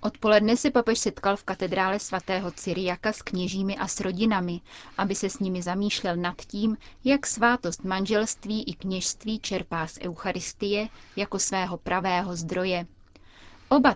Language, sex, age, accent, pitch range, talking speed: Czech, female, 30-49, native, 180-215 Hz, 140 wpm